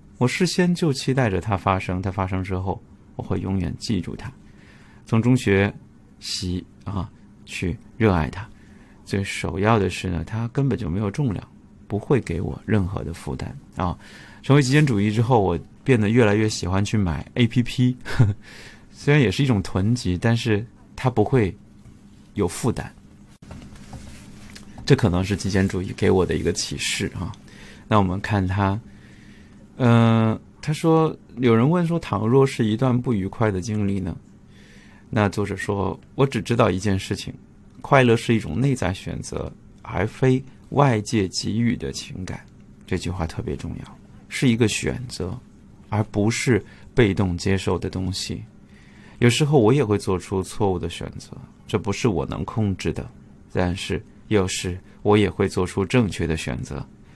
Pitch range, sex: 95-120 Hz, male